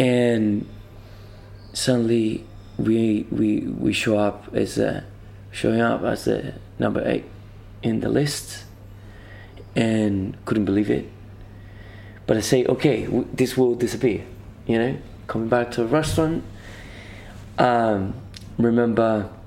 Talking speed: 115 wpm